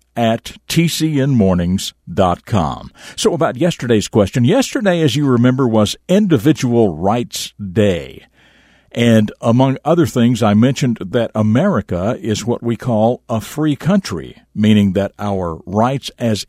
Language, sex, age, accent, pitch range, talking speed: English, male, 50-69, American, 105-135 Hz, 125 wpm